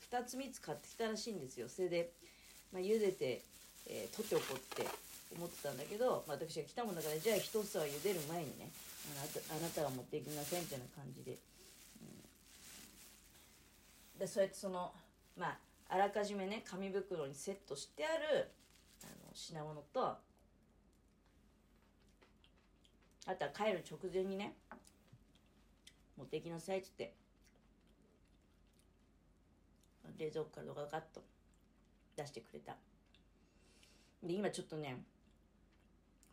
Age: 40-59